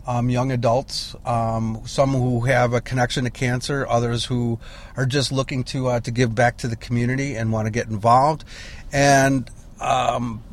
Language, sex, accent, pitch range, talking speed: English, male, American, 115-130 Hz, 175 wpm